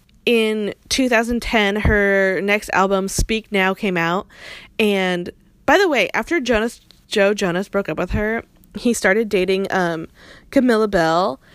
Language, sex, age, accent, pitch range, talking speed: English, female, 10-29, American, 190-250 Hz, 140 wpm